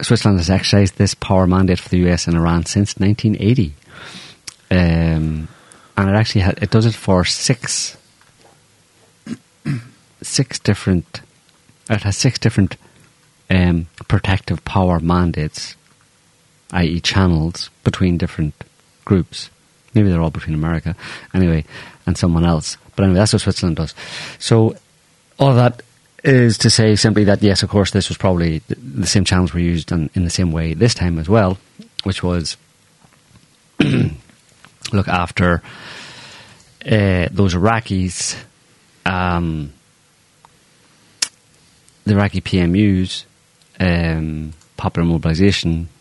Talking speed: 125 wpm